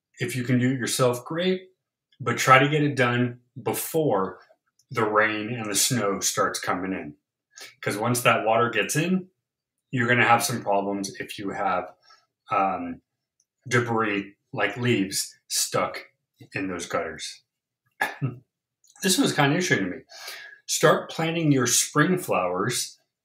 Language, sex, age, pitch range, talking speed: English, male, 30-49, 120-145 Hz, 145 wpm